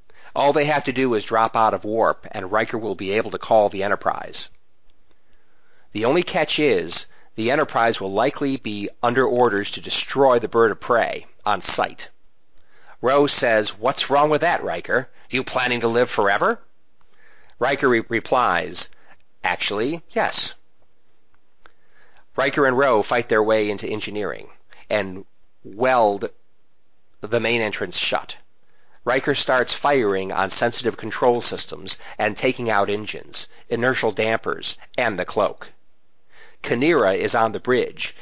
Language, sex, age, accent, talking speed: English, male, 40-59, American, 140 wpm